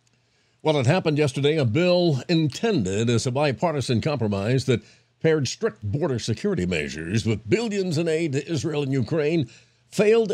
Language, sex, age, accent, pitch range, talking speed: English, male, 50-69, American, 120-150 Hz, 155 wpm